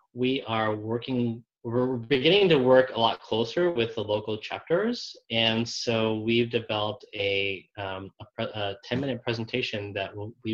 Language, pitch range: English, 105-120 Hz